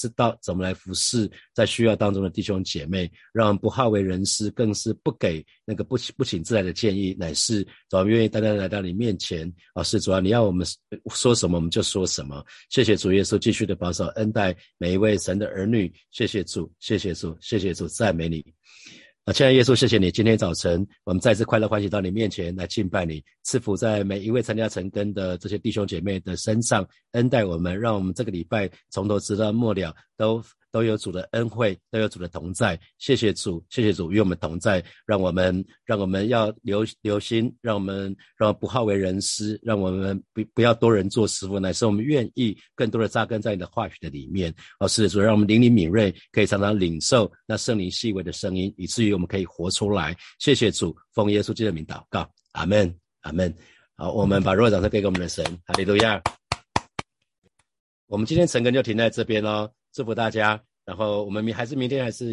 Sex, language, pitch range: male, Chinese, 95-110 Hz